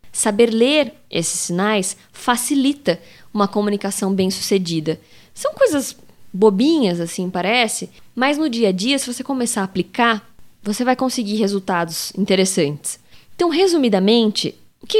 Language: Portuguese